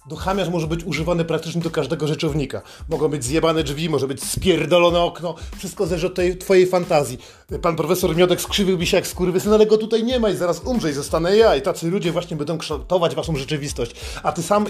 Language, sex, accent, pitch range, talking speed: Polish, male, native, 160-200 Hz, 205 wpm